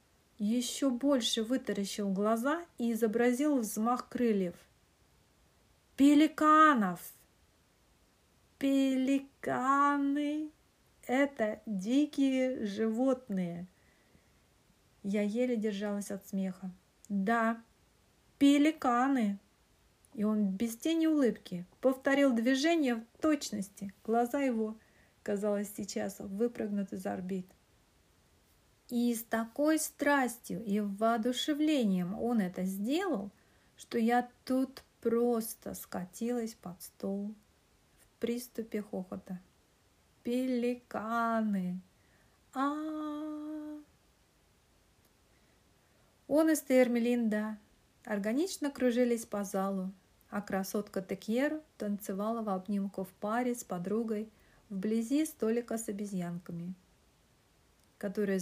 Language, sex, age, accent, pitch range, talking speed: Russian, female, 40-59, native, 195-260 Hz, 80 wpm